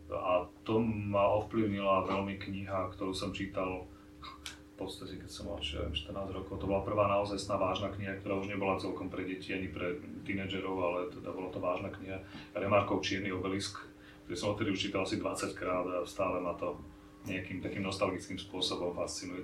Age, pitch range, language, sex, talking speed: 30-49, 95-105 Hz, Slovak, male, 175 wpm